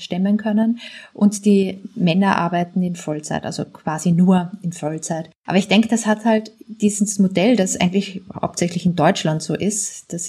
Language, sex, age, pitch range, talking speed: German, female, 20-39, 175-210 Hz, 170 wpm